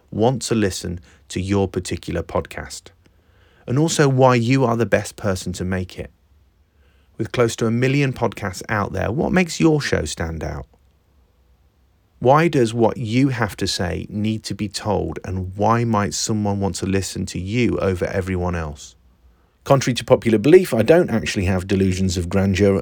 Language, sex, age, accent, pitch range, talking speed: English, male, 30-49, British, 85-115 Hz, 175 wpm